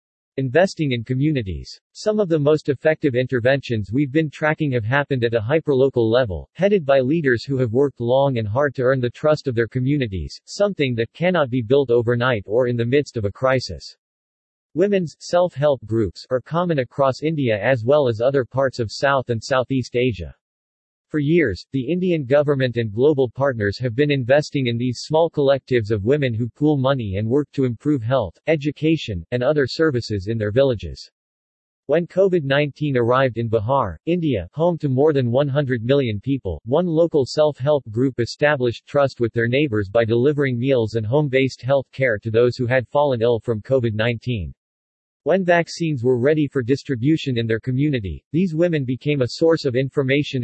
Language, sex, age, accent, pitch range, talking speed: English, male, 50-69, American, 120-150 Hz, 175 wpm